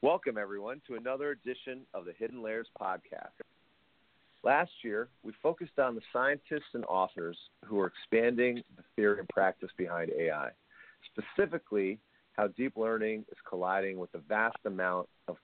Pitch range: 95-120 Hz